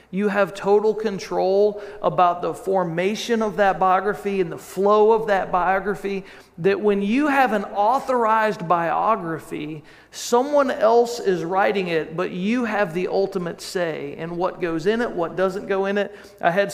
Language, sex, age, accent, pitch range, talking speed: English, male, 40-59, American, 180-215 Hz, 165 wpm